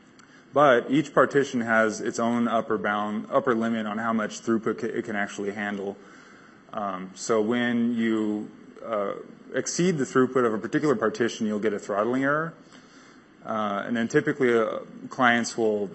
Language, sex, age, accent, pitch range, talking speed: English, male, 20-39, American, 110-130 Hz, 160 wpm